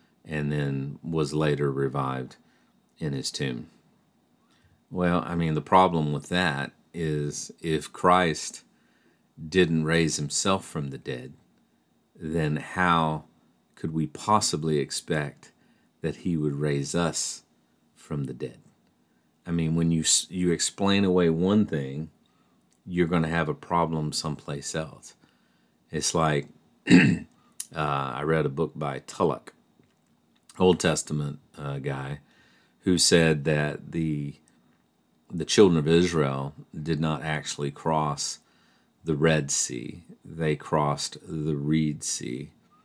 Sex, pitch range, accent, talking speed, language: male, 75-80 Hz, American, 125 wpm, English